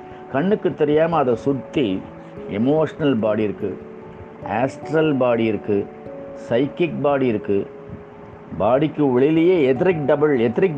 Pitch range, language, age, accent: 110-155 Hz, Tamil, 50-69, native